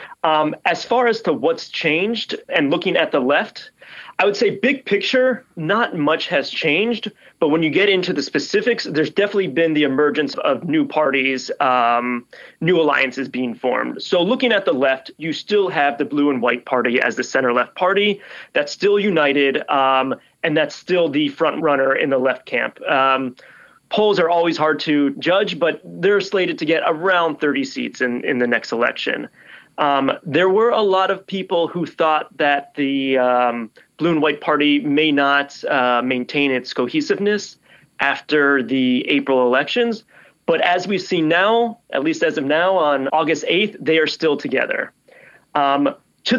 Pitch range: 140-200 Hz